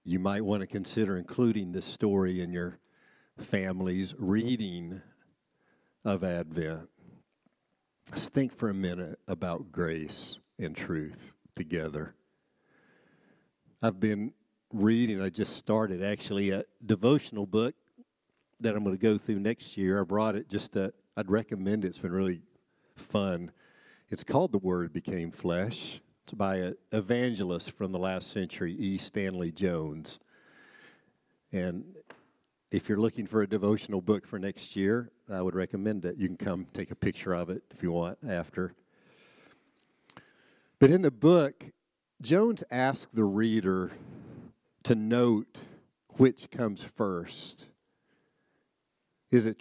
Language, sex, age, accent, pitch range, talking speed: English, male, 50-69, American, 95-115 Hz, 135 wpm